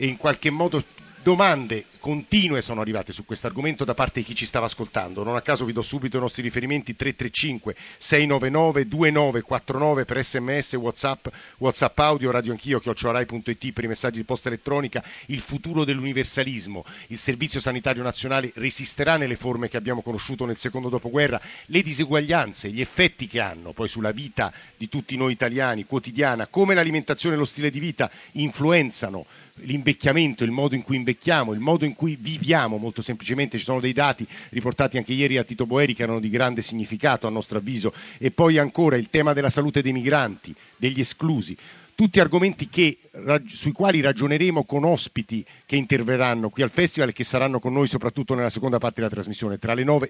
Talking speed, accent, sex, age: 180 wpm, native, male, 50-69